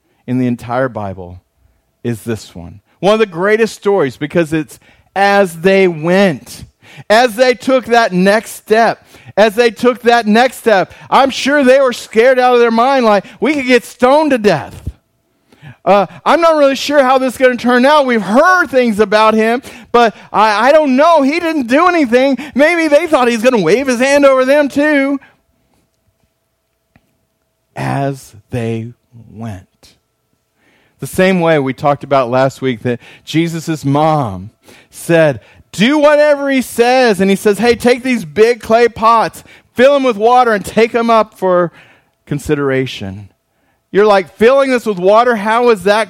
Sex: male